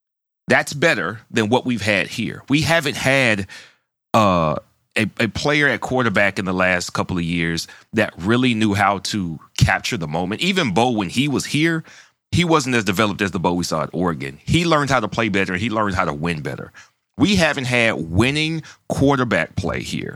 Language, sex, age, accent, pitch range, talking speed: English, male, 30-49, American, 100-145 Hz, 195 wpm